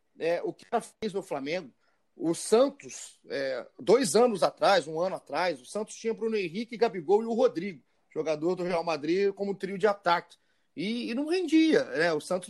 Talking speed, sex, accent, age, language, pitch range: 180 wpm, male, Brazilian, 30-49, Portuguese, 185-235 Hz